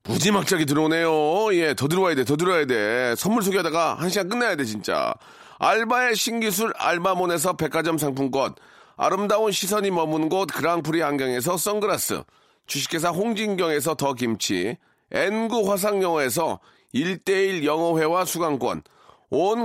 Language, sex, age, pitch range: Korean, male, 40-59, 165-210 Hz